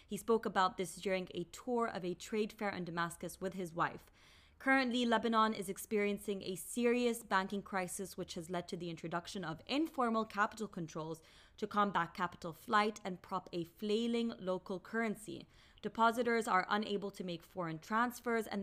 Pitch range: 175-220 Hz